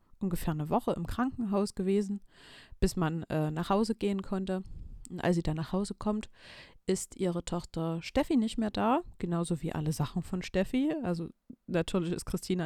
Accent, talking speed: German, 175 wpm